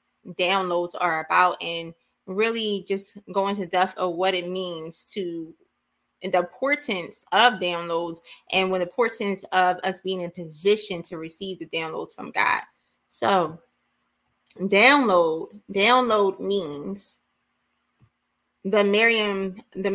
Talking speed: 120 wpm